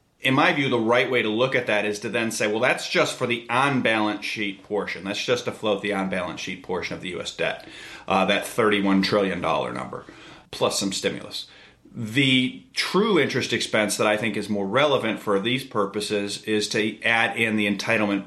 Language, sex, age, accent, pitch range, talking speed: English, male, 40-59, American, 105-125 Hz, 200 wpm